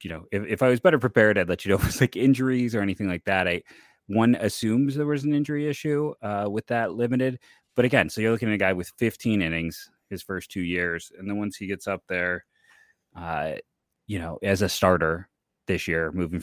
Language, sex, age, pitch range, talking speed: English, male, 30-49, 95-110 Hz, 235 wpm